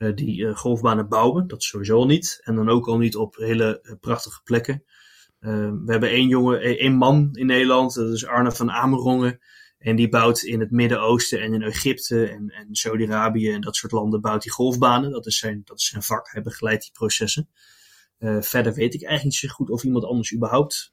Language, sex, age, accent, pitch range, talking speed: Dutch, male, 20-39, Dutch, 110-130 Hz, 220 wpm